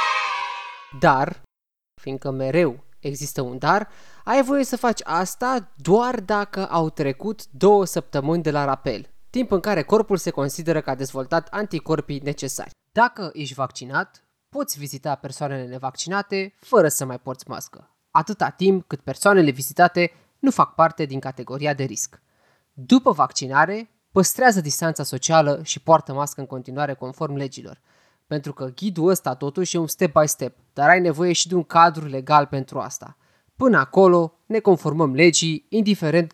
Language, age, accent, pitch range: Romanian, 20-39, native, 140-185 Hz